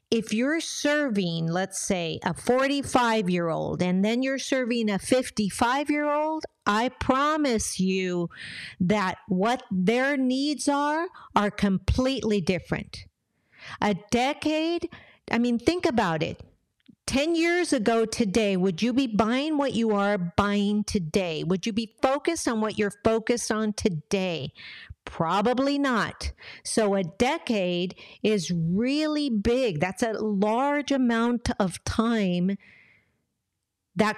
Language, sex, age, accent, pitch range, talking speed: English, female, 50-69, American, 200-255 Hz, 120 wpm